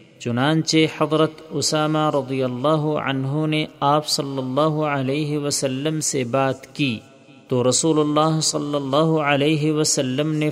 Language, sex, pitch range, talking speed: Urdu, male, 135-155 Hz, 130 wpm